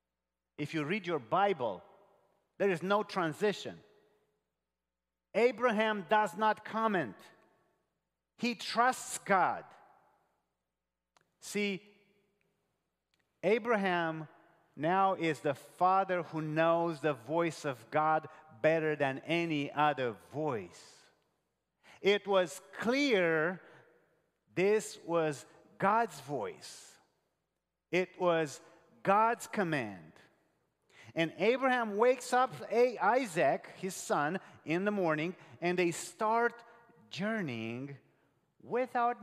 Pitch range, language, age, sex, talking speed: 135-205 Hz, English, 40-59, male, 90 wpm